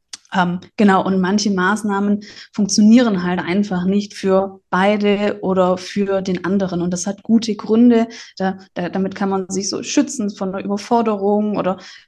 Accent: German